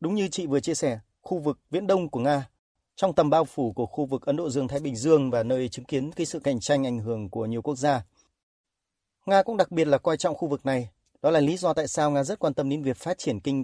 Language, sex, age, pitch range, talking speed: Vietnamese, male, 30-49, 125-165 Hz, 275 wpm